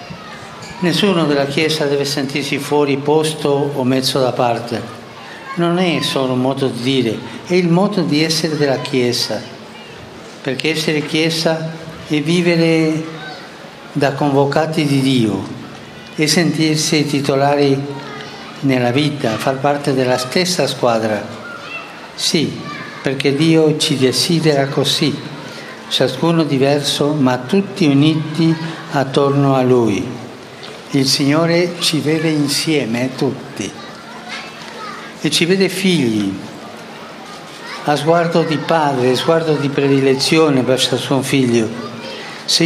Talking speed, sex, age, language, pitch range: 115 wpm, male, 60-79, Slovak, 130-160 Hz